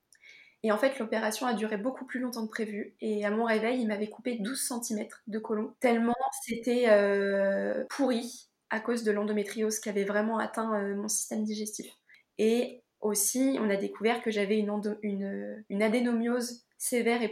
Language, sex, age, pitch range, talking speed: French, female, 20-39, 210-235 Hz, 170 wpm